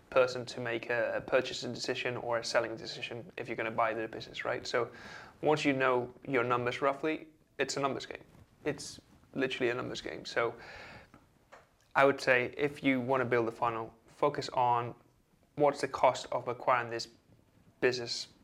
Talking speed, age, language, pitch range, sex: 175 wpm, 20-39, English, 115-130 Hz, male